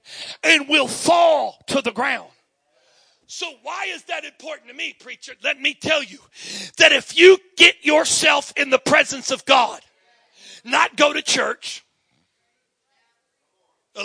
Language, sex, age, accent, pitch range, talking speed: English, male, 40-59, American, 280-340 Hz, 140 wpm